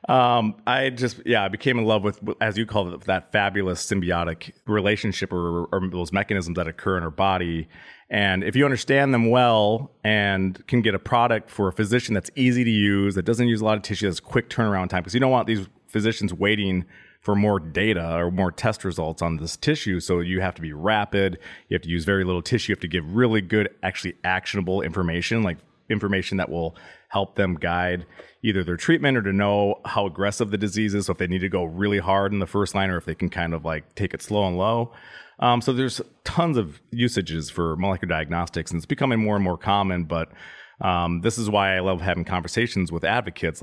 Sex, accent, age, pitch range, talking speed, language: male, American, 30-49, 85-105 Hz, 225 wpm, English